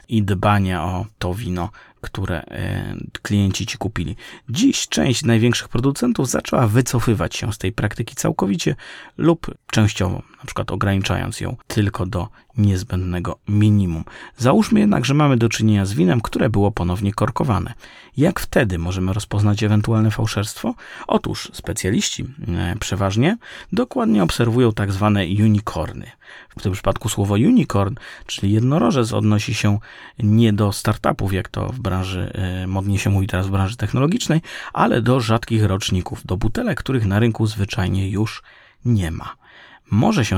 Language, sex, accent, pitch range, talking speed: Polish, male, native, 100-120 Hz, 140 wpm